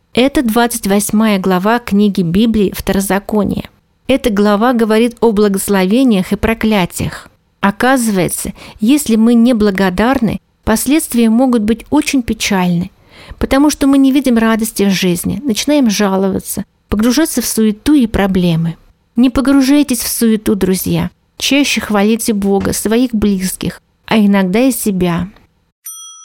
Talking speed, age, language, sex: 120 wpm, 40-59, Russian, female